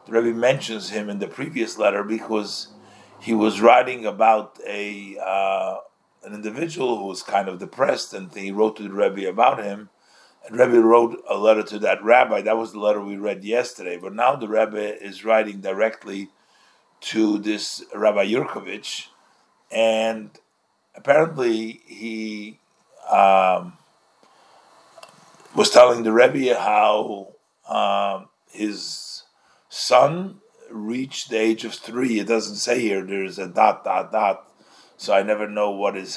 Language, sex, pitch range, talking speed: English, male, 100-115 Hz, 145 wpm